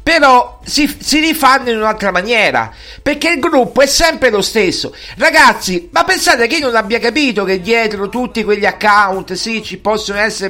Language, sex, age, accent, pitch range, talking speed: Italian, male, 50-69, native, 215-275 Hz, 175 wpm